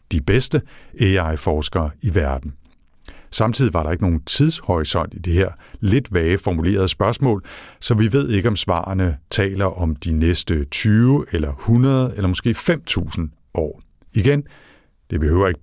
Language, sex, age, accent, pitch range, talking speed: Danish, male, 60-79, native, 80-110 Hz, 150 wpm